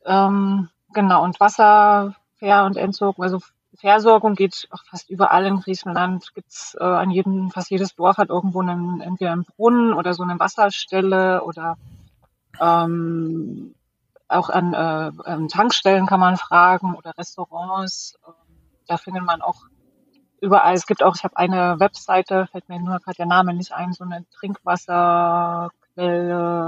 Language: German